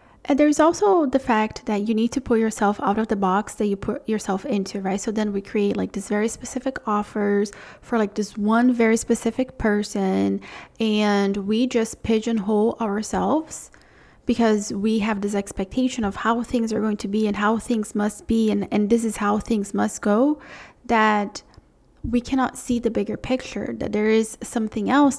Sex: female